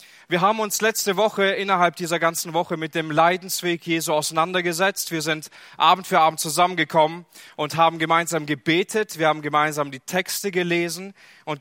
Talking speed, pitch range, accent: 160 wpm, 145-190 Hz, German